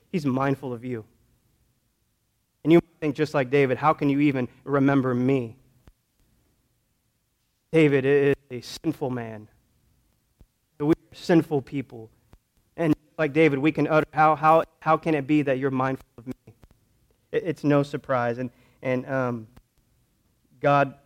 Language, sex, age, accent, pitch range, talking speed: English, male, 30-49, American, 125-155 Hz, 140 wpm